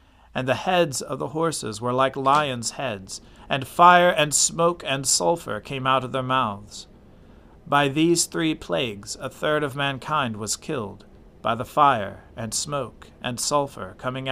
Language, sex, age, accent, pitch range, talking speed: English, male, 40-59, American, 110-150 Hz, 165 wpm